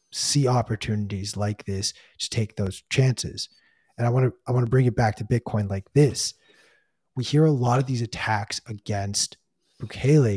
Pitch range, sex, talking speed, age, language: 105-125 Hz, male, 180 wpm, 20-39, English